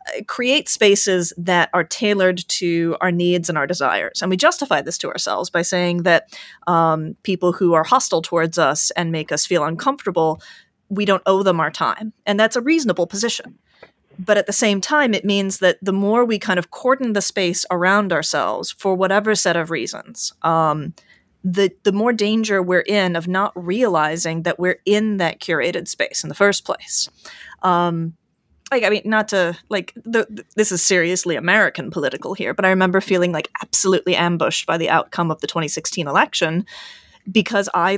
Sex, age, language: female, 30-49, English